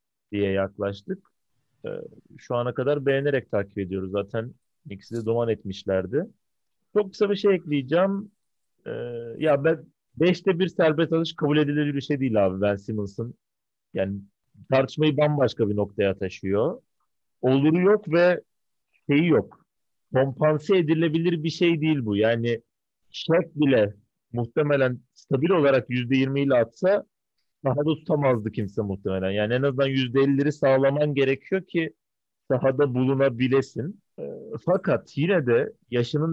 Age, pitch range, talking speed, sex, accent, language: 40-59, 125-160 Hz, 130 wpm, male, native, Turkish